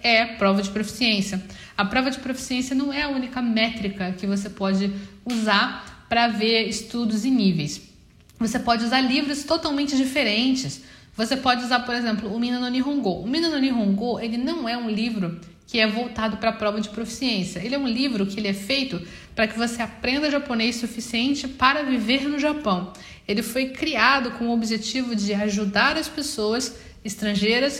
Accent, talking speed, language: Brazilian, 175 wpm, Portuguese